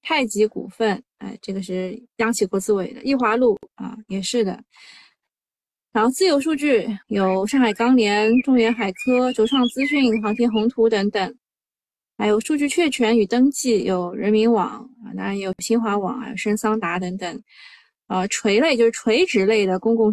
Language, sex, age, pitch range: Chinese, female, 20-39, 200-240 Hz